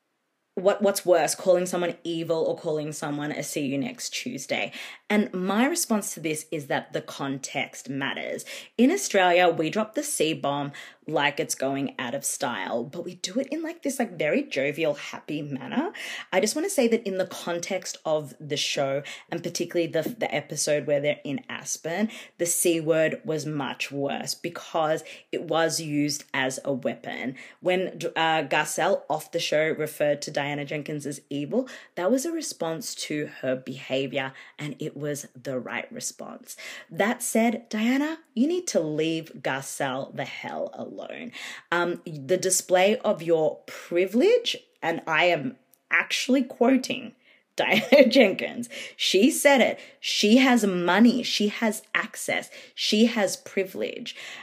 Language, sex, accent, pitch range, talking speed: English, female, Australian, 150-230 Hz, 160 wpm